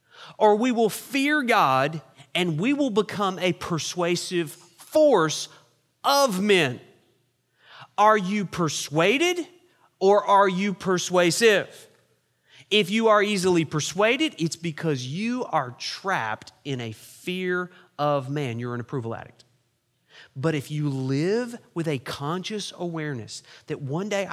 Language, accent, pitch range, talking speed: English, American, 140-205 Hz, 125 wpm